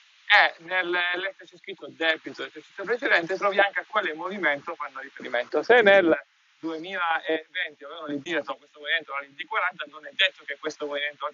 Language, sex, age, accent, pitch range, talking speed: Italian, male, 30-49, native, 145-185 Hz, 150 wpm